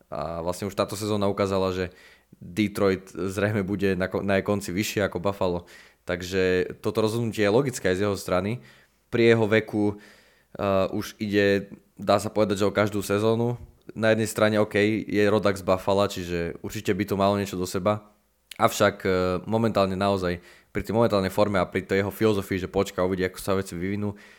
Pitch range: 90-105 Hz